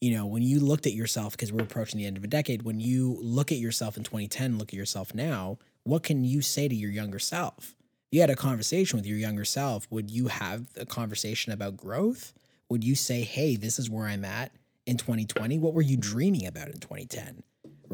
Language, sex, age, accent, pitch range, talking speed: English, male, 20-39, American, 110-140 Hz, 225 wpm